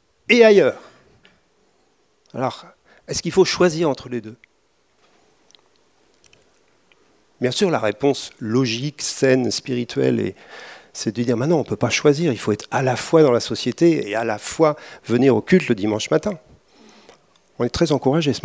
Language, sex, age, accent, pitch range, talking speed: French, male, 50-69, French, 125-170 Hz, 165 wpm